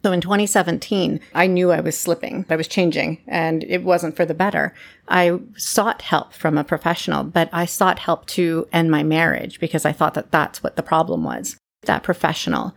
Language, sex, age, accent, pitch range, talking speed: English, female, 40-59, American, 170-210 Hz, 195 wpm